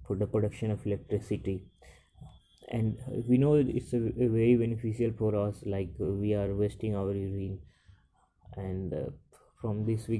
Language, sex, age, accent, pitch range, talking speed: English, male, 20-39, Indian, 105-115 Hz, 140 wpm